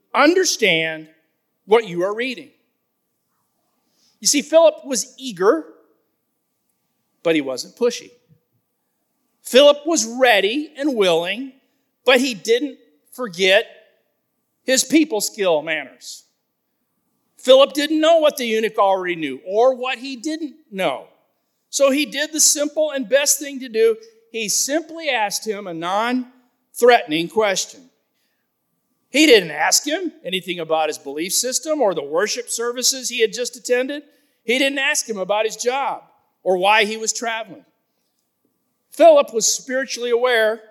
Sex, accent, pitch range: male, American, 200-275 Hz